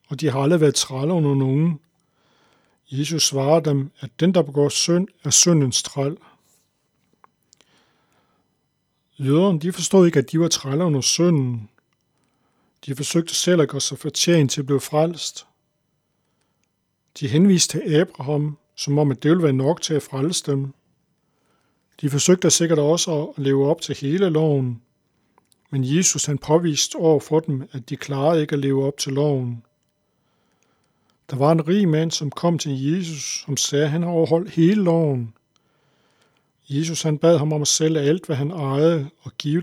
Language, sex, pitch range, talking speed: Danish, male, 140-165 Hz, 170 wpm